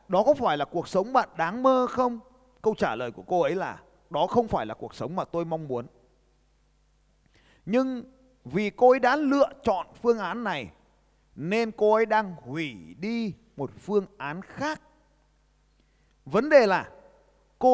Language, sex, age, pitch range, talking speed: Vietnamese, male, 30-49, 165-245 Hz, 175 wpm